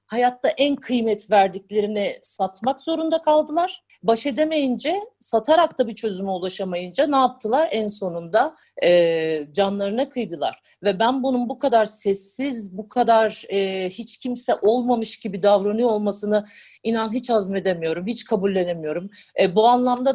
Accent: native